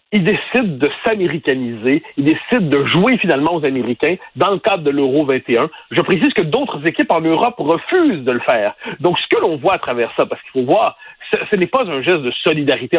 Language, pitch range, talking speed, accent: French, 140-220 Hz, 220 wpm, French